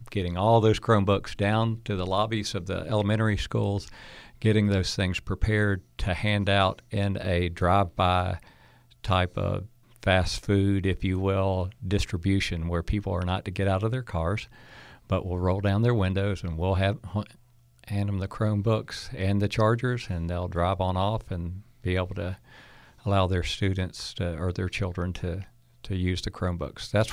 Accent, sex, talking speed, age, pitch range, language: American, male, 175 wpm, 50-69, 95-110 Hz, English